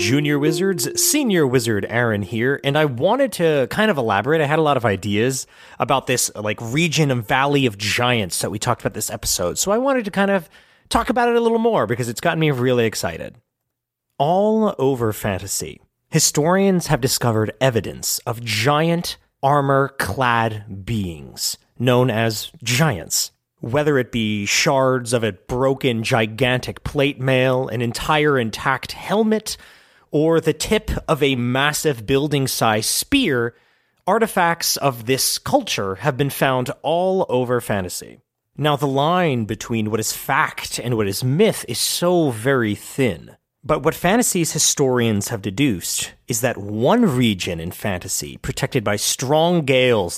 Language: English